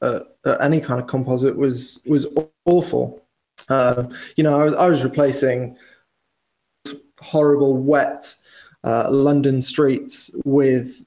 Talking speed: 125 wpm